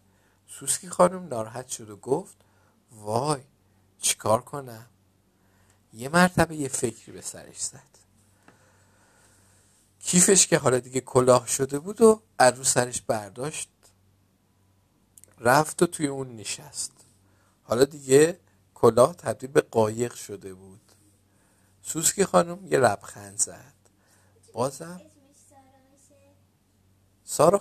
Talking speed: 105 wpm